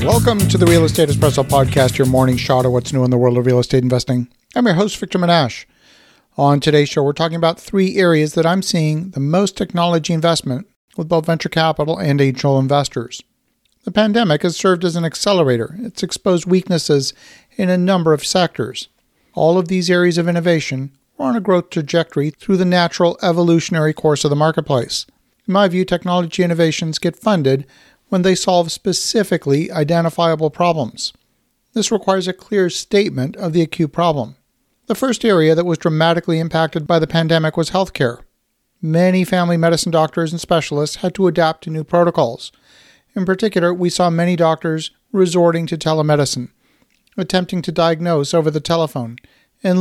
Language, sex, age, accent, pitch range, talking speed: English, male, 50-69, American, 150-185 Hz, 170 wpm